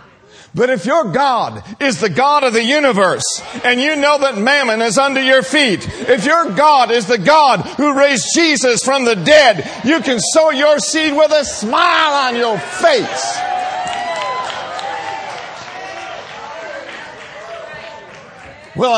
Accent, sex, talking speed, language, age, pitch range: American, male, 135 wpm, English, 50-69, 170-240 Hz